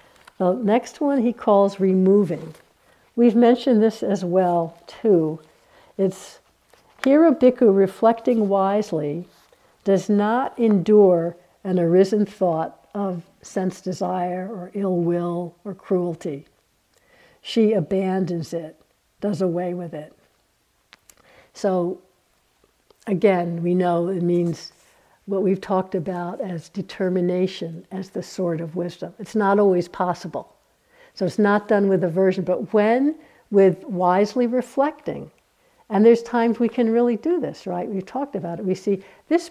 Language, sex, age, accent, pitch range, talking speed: English, female, 60-79, American, 180-220 Hz, 130 wpm